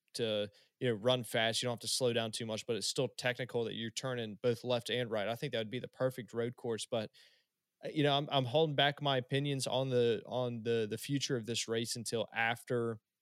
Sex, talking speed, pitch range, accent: male, 240 wpm, 115-130 Hz, American